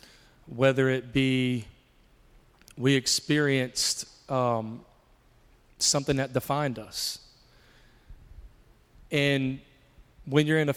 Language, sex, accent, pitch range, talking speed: English, male, American, 125-145 Hz, 85 wpm